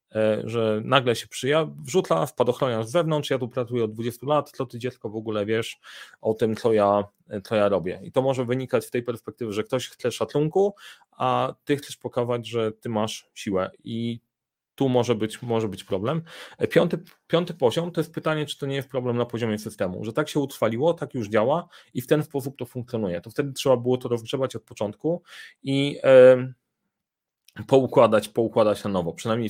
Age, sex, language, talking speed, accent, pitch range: 30-49, male, Polish, 195 wpm, native, 110-140 Hz